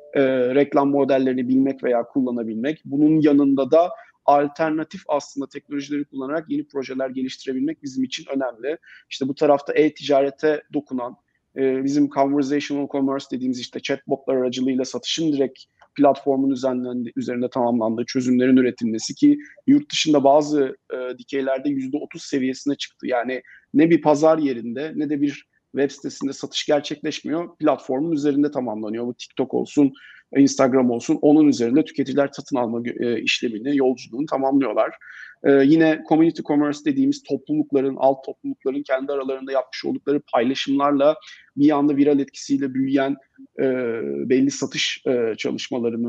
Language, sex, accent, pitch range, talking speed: Turkish, male, native, 130-150 Hz, 130 wpm